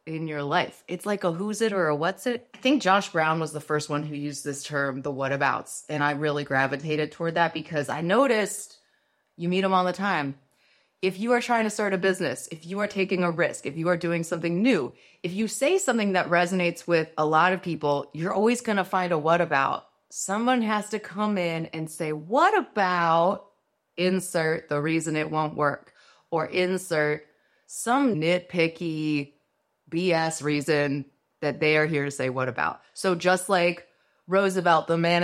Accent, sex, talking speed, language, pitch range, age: American, female, 200 wpm, English, 155-210 Hz, 30-49